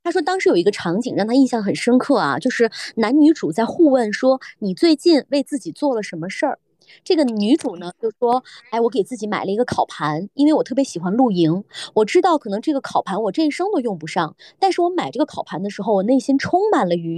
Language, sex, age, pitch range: Chinese, female, 20-39, 205-290 Hz